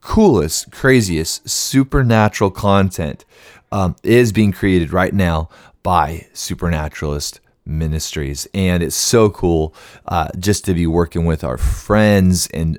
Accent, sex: American, male